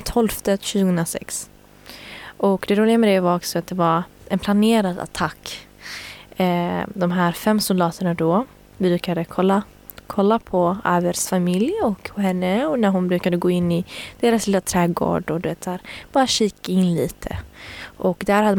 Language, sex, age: Swedish, female, 20-39